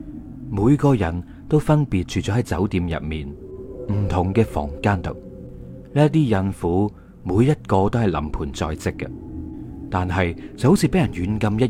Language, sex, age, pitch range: Chinese, male, 30-49, 85-120 Hz